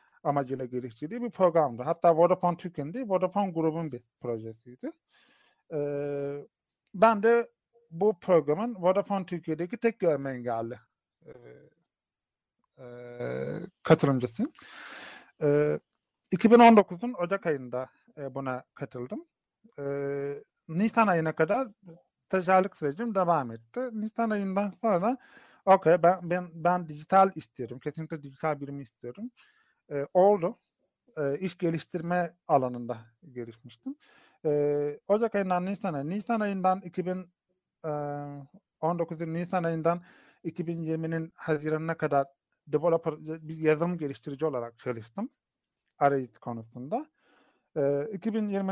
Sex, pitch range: male, 145-195 Hz